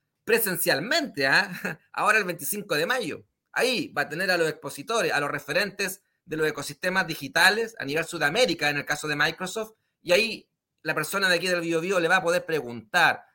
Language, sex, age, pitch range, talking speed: Spanish, male, 30-49, 155-185 Hz, 190 wpm